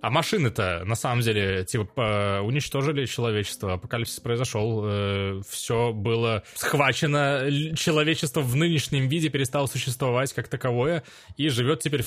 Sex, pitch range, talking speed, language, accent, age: male, 115-165 Hz, 125 wpm, Russian, native, 20-39